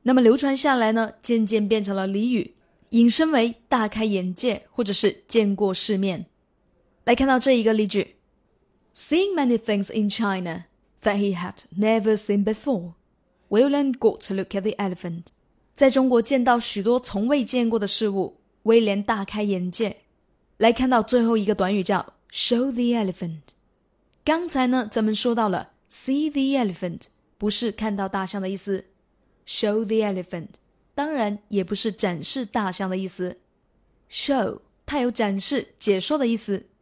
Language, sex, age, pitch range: Chinese, female, 20-39, 200-245 Hz